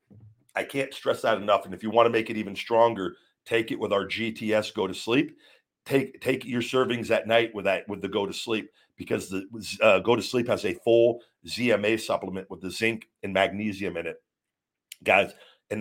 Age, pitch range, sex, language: 50-69, 105-115 Hz, male, English